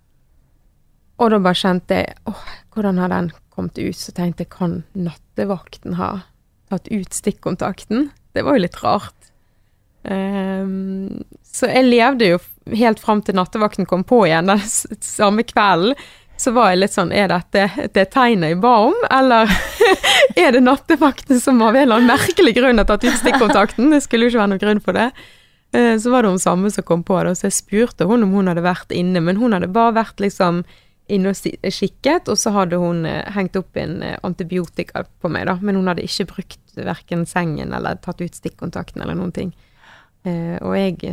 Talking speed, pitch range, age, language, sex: 180 wpm, 180-245 Hz, 20-39, English, female